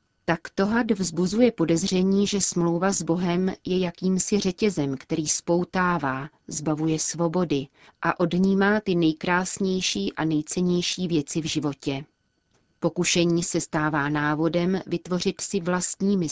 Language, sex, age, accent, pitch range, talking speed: Czech, female, 30-49, native, 155-180 Hz, 115 wpm